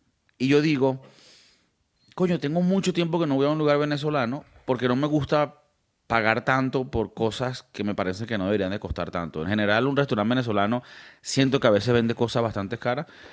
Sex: male